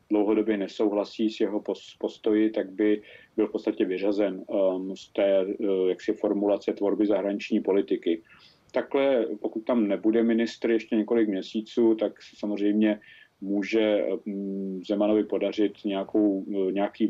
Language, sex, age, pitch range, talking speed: Czech, male, 40-59, 100-115 Hz, 120 wpm